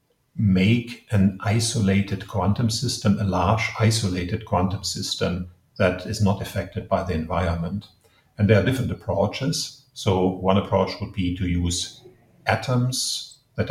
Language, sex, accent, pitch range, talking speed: Polish, male, German, 90-110 Hz, 135 wpm